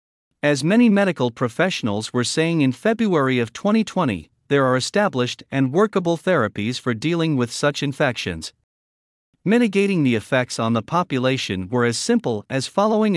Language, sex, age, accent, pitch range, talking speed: English, male, 50-69, American, 115-170 Hz, 145 wpm